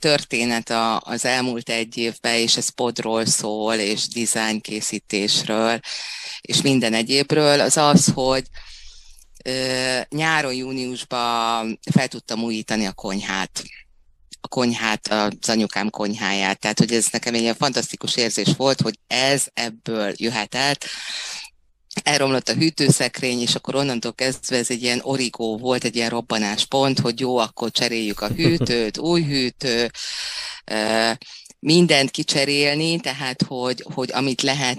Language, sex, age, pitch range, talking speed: Hungarian, female, 30-49, 115-140 Hz, 125 wpm